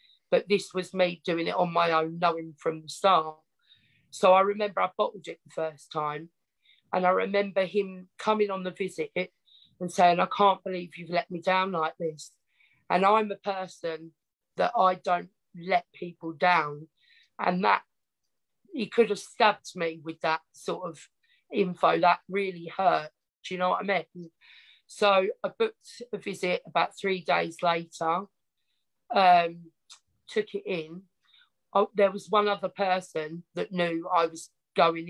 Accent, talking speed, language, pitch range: British, 160 wpm, English, 165-200 Hz